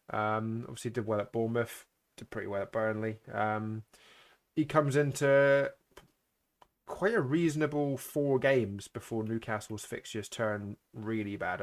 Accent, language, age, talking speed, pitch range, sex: British, English, 20-39, 135 wpm, 105-130 Hz, male